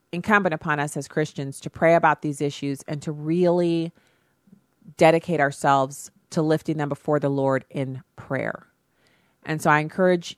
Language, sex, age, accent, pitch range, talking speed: English, female, 30-49, American, 145-175 Hz, 155 wpm